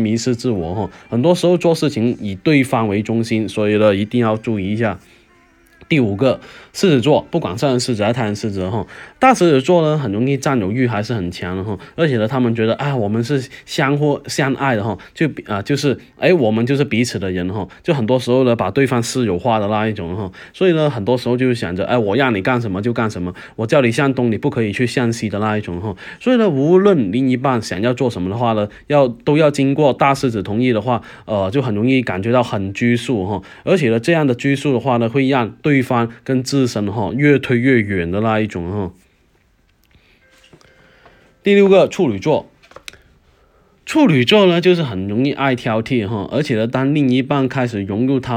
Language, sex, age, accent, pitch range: Chinese, male, 20-39, native, 105-135 Hz